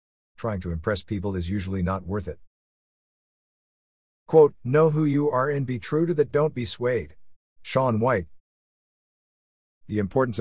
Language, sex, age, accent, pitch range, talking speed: English, male, 50-69, American, 90-120 Hz, 150 wpm